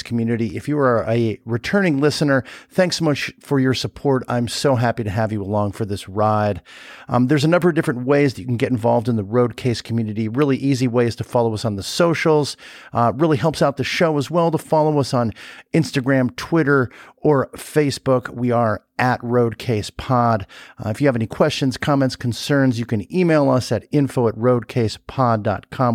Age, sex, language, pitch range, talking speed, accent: 50-69, male, English, 110-135 Hz, 200 wpm, American